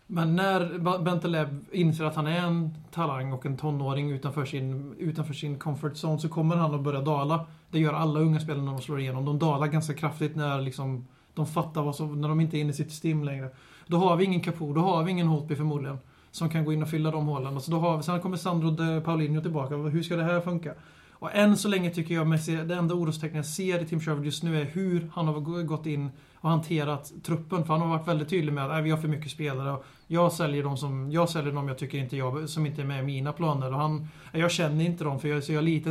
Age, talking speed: 30-49, 250 wpm